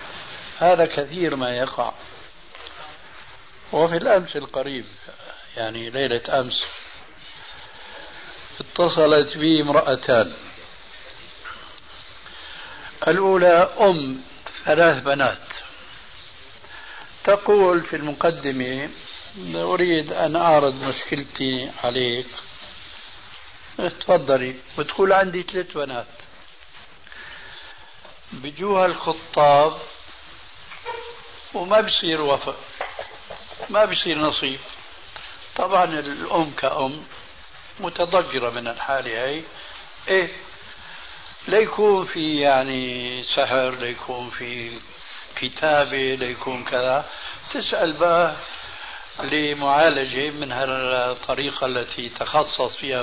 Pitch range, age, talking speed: 130-170 Hz, 60-79, 70 wpm